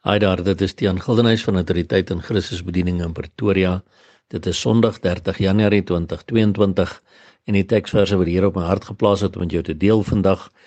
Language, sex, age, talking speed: English, male, 60-79, 190 wpm